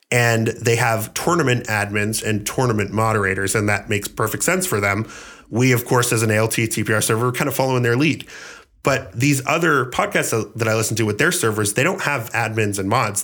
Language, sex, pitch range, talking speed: English, male, 105-130 Hz, 205 wpm